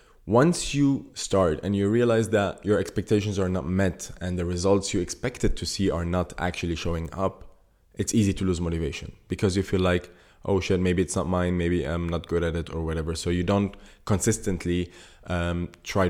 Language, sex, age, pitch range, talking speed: English, male, 20-39, 85-100 Hz, 200 wpm